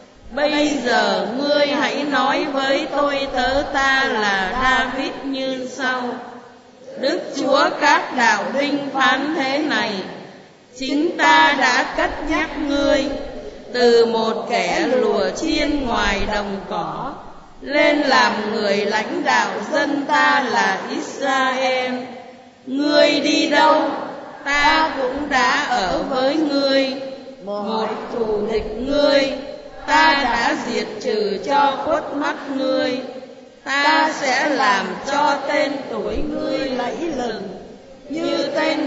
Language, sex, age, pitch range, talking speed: Vietnamese, female, 20-39, 250-290 Hz, 115 wpm